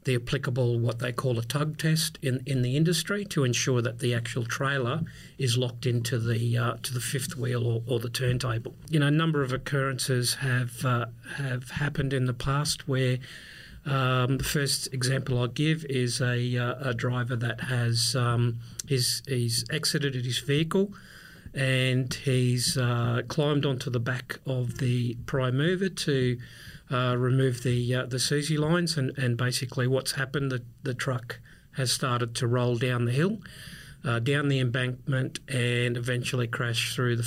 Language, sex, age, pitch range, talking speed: English, male, 40-59, 125-140 Hz, 170 wpm